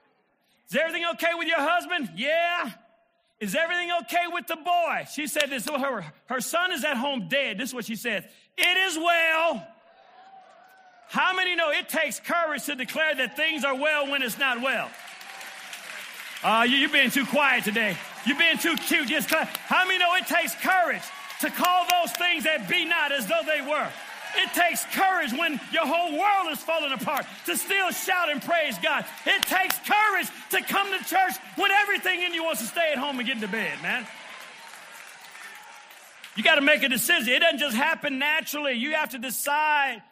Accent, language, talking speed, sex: American, English, 190 wpm, male